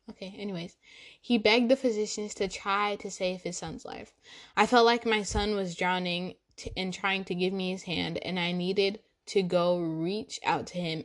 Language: English